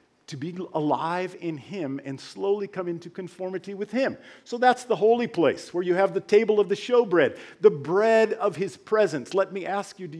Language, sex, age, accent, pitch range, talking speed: English, male, 50-69, American, 150-200 Hz, 205 wpm